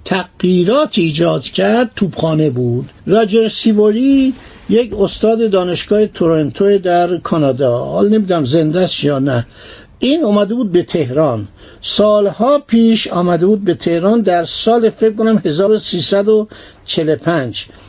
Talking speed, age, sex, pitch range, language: 115 wpm, 60-79, male, 170-215 Hz, Persian